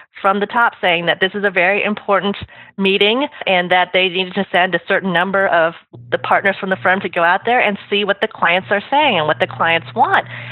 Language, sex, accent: English, female, American